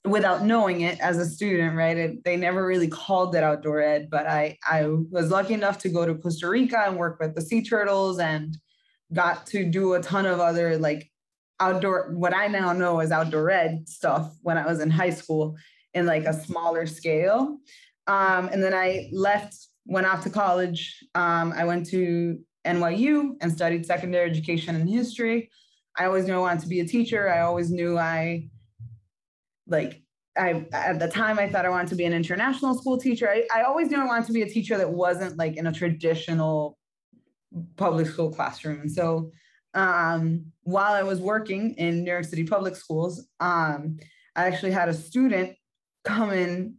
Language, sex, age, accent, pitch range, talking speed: English, female, 20-39, American, 165-200 Hz, 190 wpm